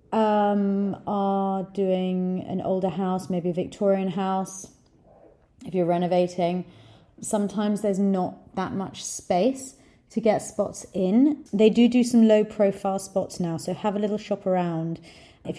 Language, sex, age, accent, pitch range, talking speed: English, female, 30-49, British, 165-195 Hz, 145 wpm